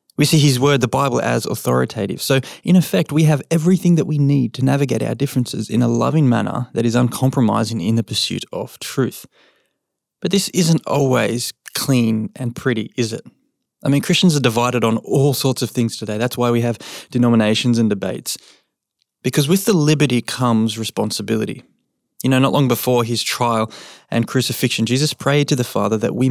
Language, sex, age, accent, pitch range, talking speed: English, male, 20-39, Australian, 115-145 Hz, 185 wpm